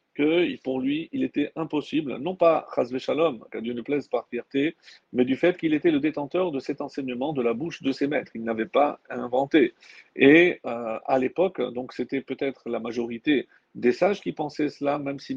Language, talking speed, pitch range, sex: French, 205 wpm, 125-165 Hz, male